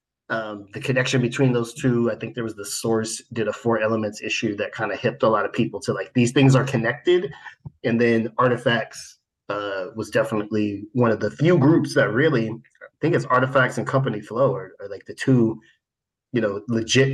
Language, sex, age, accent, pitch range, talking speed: English, male, 30-49, American, 115-135 Hz, 205 wpm